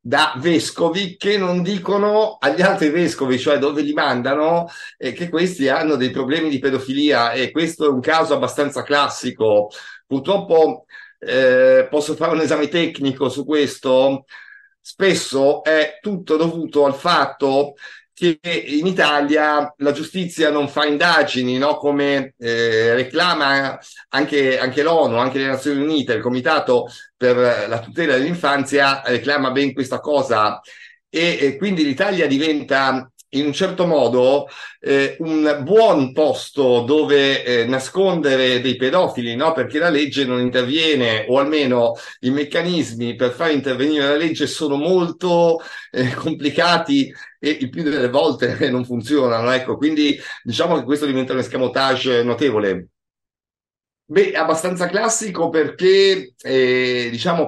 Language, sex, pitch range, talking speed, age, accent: Italian, male, 130-170 Hz, 135 wpm, 50-69, native